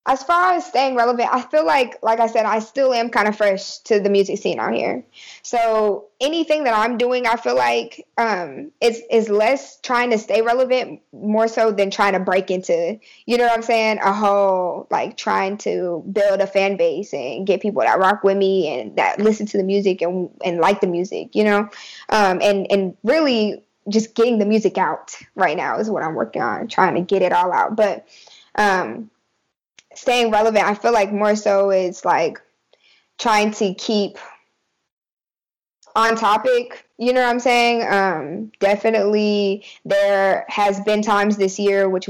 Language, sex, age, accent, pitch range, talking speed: English, female, 10-29, American, 195-225 Hz, 190 wpm